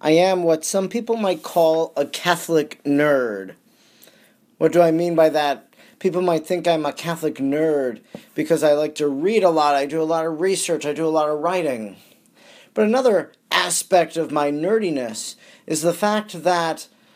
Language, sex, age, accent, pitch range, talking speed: English, male, 40-59, American, 160-195 Hz, 180 wpm